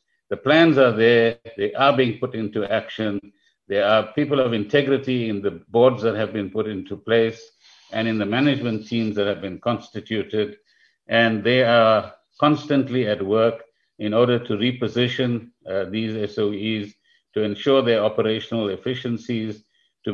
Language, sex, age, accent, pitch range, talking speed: English, male, 50-69, Indian, 105-130 Hz, 155 wpm